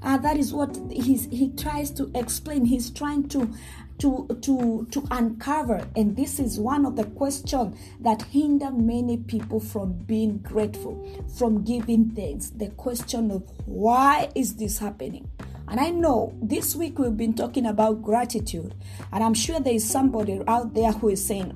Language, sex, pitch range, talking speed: English, female, 215-265 Hz, 170 wpm